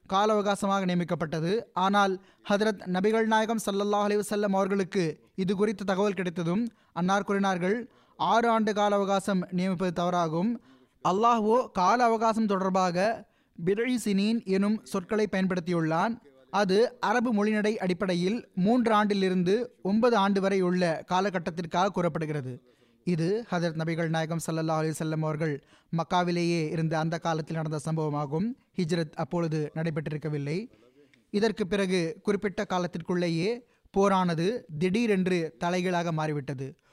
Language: Tamil